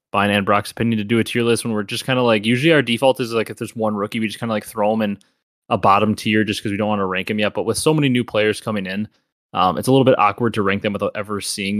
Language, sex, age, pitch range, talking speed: English, male, 20-39, 100-115 Hz, 325 wpm